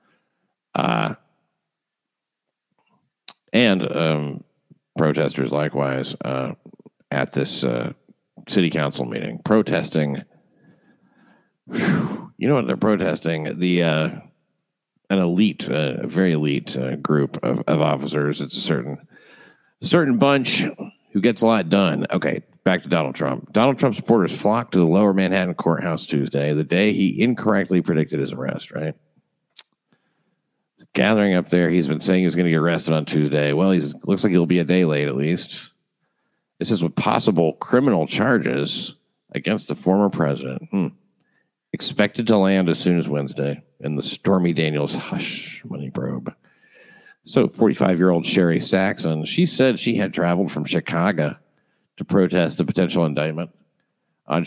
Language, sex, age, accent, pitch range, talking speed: English, male, 50-69, American, 75-95 Hz, 145 wpm